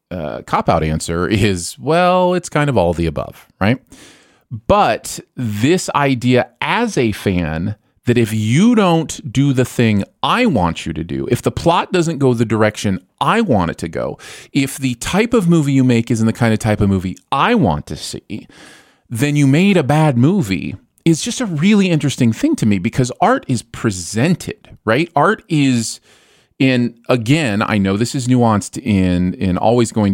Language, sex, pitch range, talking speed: English, male, 95-130 Hz, 185 wpm